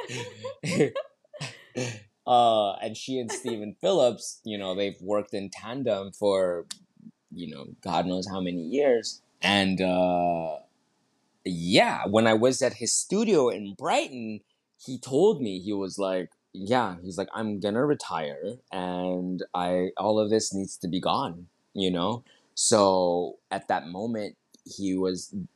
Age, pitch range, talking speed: 20-39, 95-145 Hz, 140 wpm